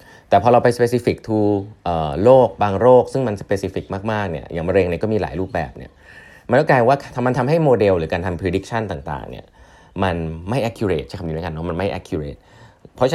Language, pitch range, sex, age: Thai, 85-110 Hz, male, 20-39